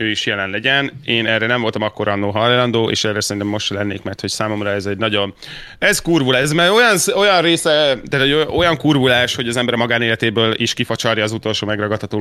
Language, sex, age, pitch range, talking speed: Hungarian, male, 30-49, 110-135 Hz, 200 wpm